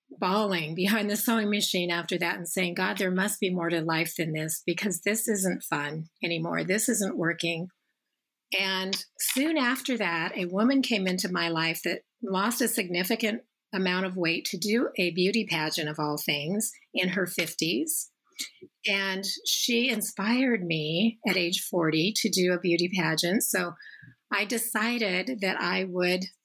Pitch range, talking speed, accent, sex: 175-220 Hz, 165 wpm, American, female